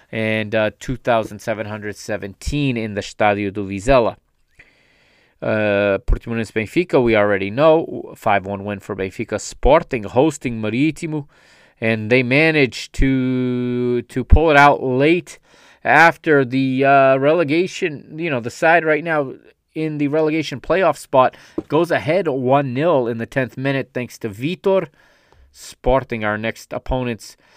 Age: 30-49